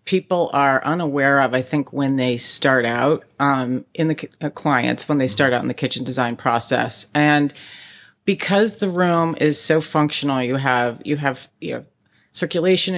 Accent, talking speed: American, 175 wpm